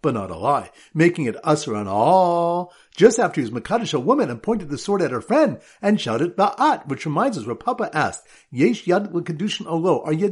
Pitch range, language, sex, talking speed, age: 150-210 Hz, English, male, 225 wpm, 50-69